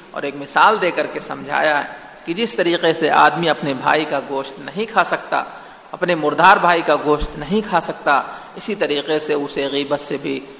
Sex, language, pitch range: male, Urdu, 145-180 Hz